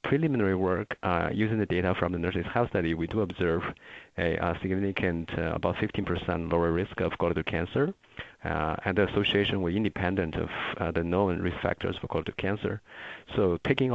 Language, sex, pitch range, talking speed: English, male, 85-105 Hz, 175 wpm